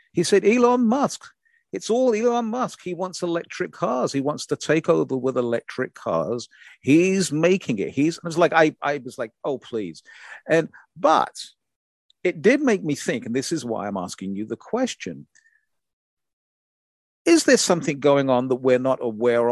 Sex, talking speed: male, 180 wpm